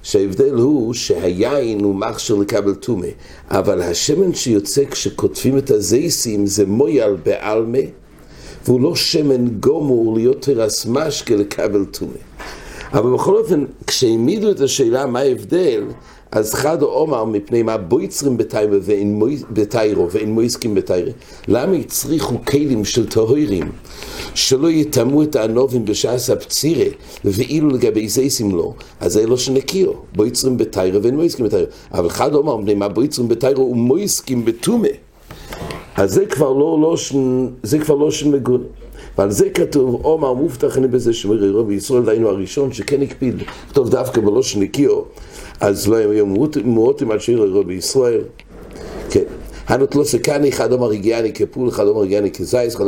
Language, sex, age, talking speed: English, male, 60-79, 105 wpm